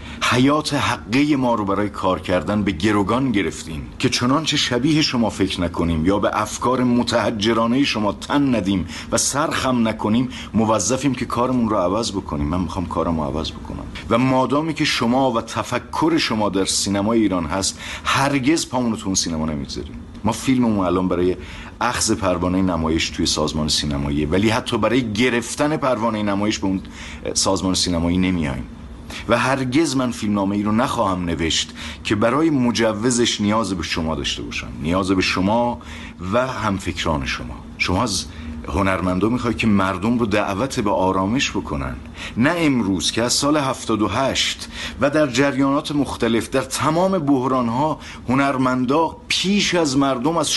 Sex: male